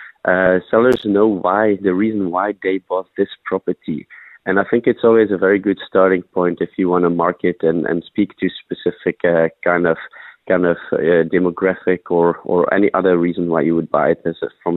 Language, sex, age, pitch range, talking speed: English, male, 30-49, 85-100 Hz, 205 wpm